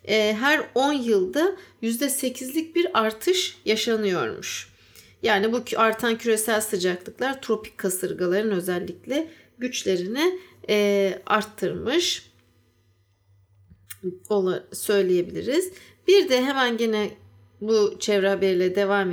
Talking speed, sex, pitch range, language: 80 wpm, female, 195-265 Hz, Turkish